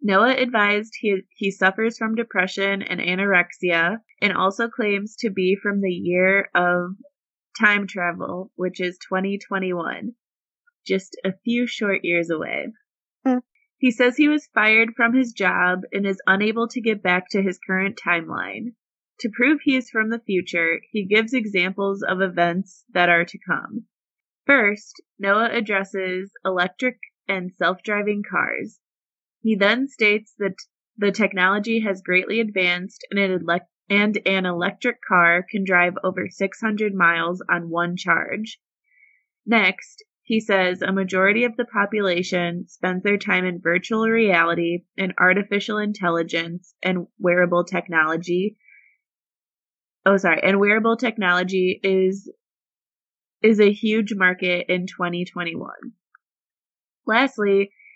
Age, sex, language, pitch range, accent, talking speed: 20-39, female, English, 180-225 Hz, American, 130 wpm